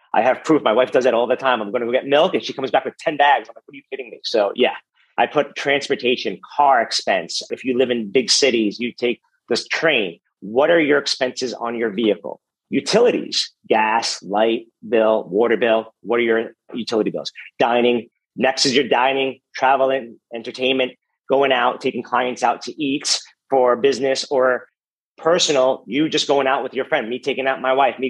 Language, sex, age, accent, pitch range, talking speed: English, male, 40-59, American, 120-140 Hz, 205 wpm